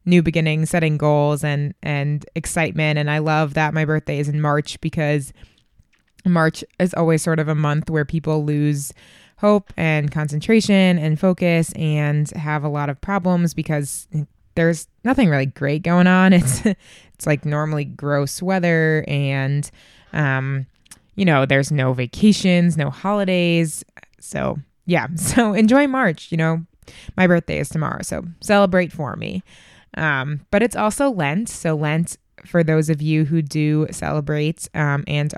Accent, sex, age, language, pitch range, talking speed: American, female, 20-39, English, 150-175 Hz, 155 wpm